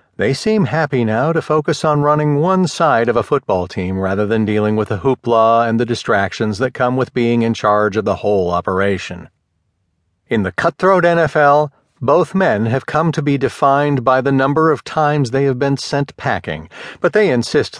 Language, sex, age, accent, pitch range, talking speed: English, male, 50-69, American, 105-145 Hz, 190 wpm